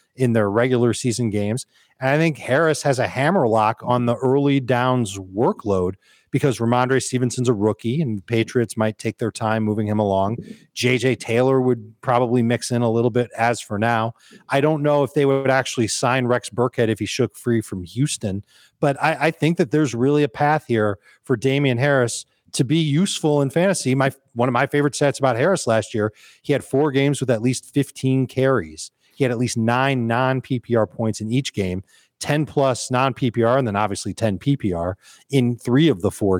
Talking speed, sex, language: 195 wpm, male, English